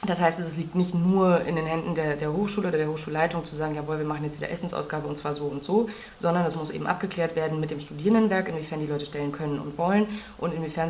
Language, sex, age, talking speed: German, female, 20-39, 255 wpm